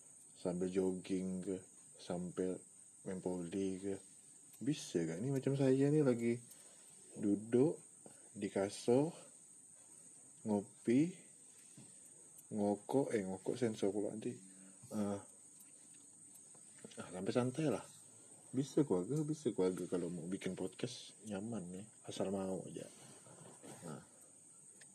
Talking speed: 100 wpm